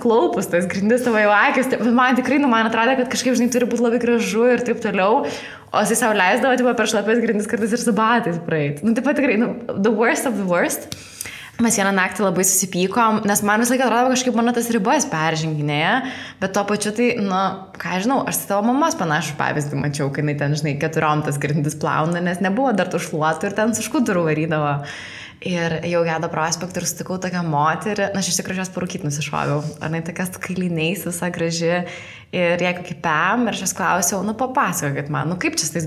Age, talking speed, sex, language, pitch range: 20-39, 195 wpm, female, English, 170-230 Hz